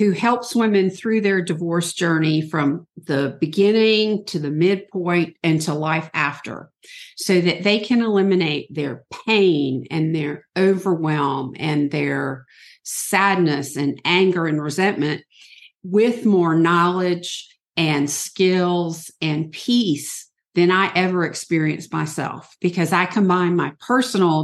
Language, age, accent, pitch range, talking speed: English, 50-69, American, 155-190 Hz, 125 wpm